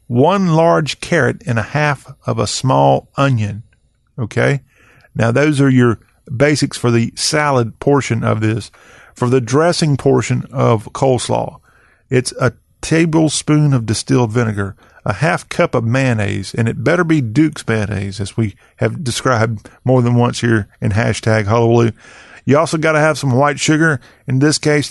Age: 40-59